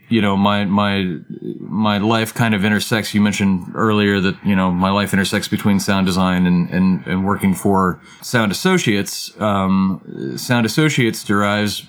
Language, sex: English, male